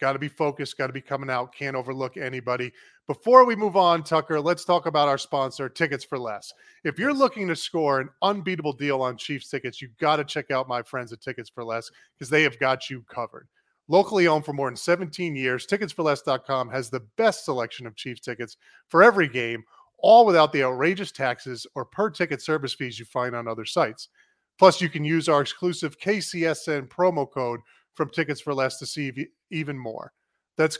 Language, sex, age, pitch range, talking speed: English, male, 30-49, 130-180 Hz, 200 wpm